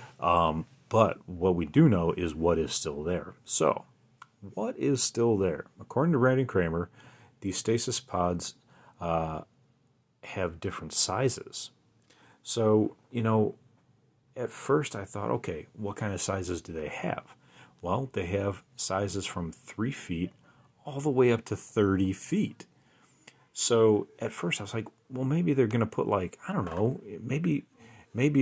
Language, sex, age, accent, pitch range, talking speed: English, male, 40-59, American, 90-115 Hz, 155 wpm